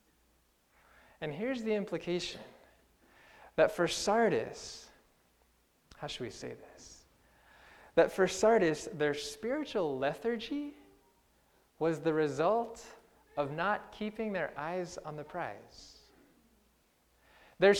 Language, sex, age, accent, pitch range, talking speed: English, male, 20-39, American, 155-235 Hz, 100 wpm